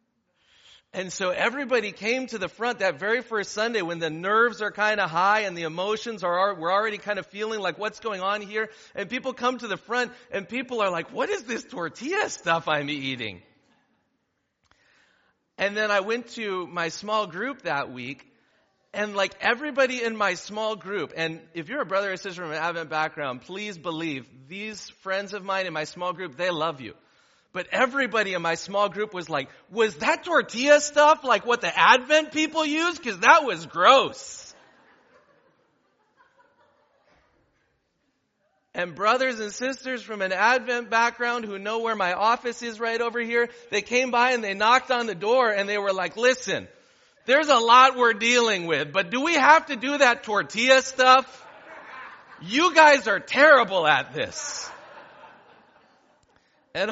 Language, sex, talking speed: English, male, 175 wpm